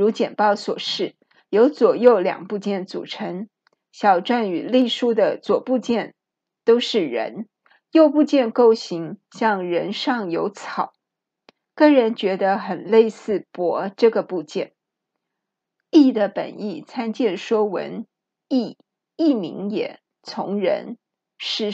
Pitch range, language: 195-260 Hz, Chinese